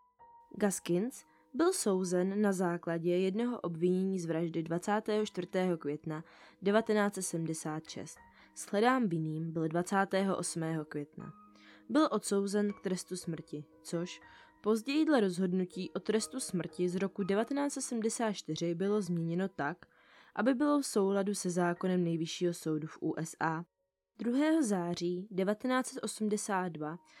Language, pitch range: Czech, 165-215 Hz